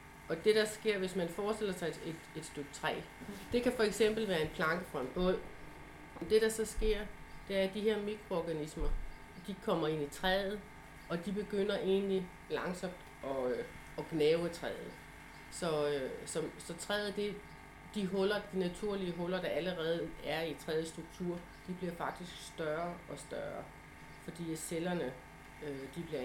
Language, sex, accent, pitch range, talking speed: Danish, female, native, 150-185 Hz, 165 wpm